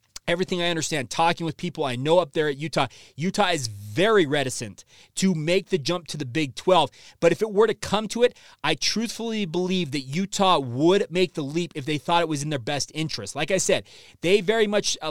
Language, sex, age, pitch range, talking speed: English, male, 30-49, 145-180 Hz, 225 wpm